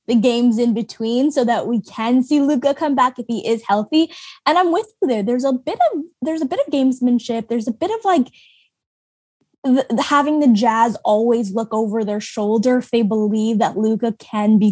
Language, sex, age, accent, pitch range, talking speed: English, female, 10-29, American, 220-280 Hz, 210 wpm